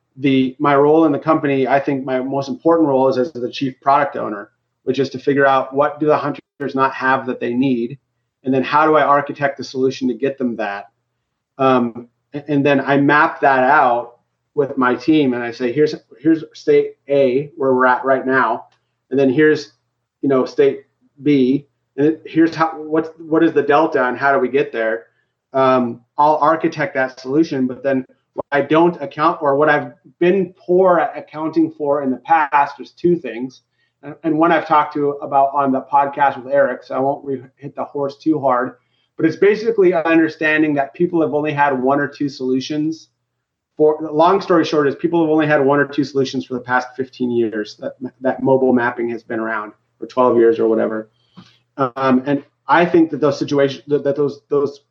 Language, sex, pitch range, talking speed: English, male, 130-155 Hz, 205 wpm